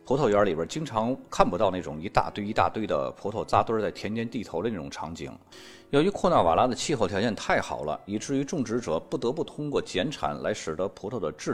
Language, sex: Chinese, male